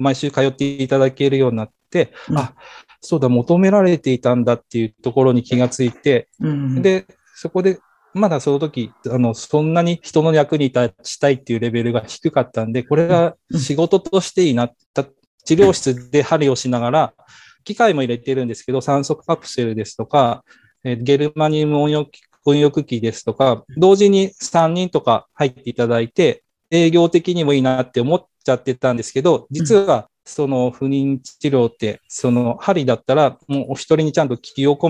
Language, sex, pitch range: Japanese, male, 125-165 Hz